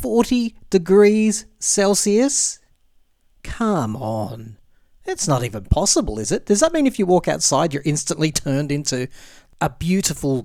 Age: 40-59